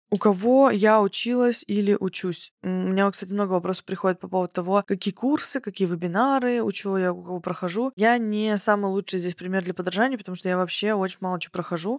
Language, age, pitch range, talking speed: Russian, 20-39, 185-210 Hz, 205 wpm